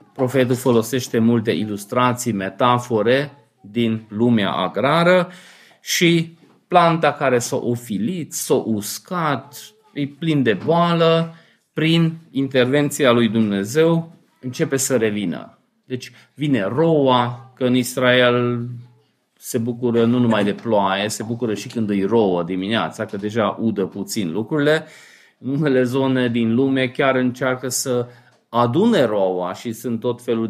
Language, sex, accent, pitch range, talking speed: Romanian, male, native, 115-145 Hz, 125 wpm